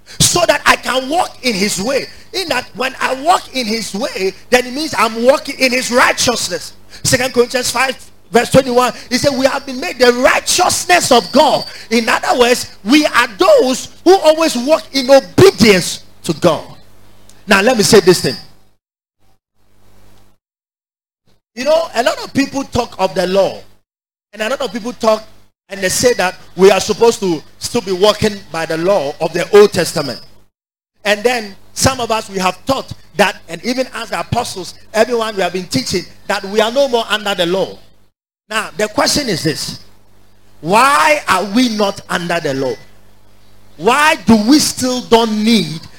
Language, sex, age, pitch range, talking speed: English, male, 30-49, 180-255 Hz, 180 wpm